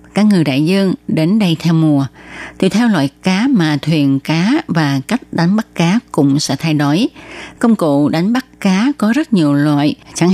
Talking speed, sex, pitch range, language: 195 wpm, female, 155-205 Hz, Vietnamese